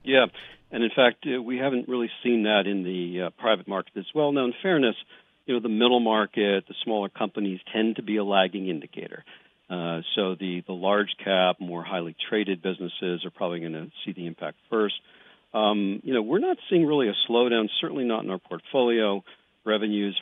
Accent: American